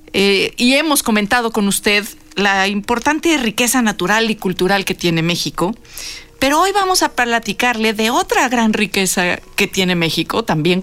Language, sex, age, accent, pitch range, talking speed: Spanish, female, 40-59, Mexican, 165-225 Hz, 155 wpm